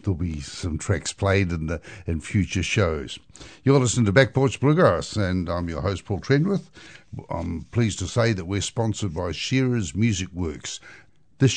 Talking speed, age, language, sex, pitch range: 175 wpm, 60-79, English, male, 90-110 Hz